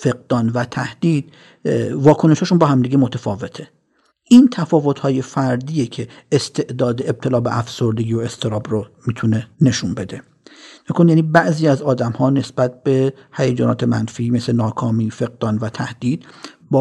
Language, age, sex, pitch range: English, 50-69, male, 125-155 Hz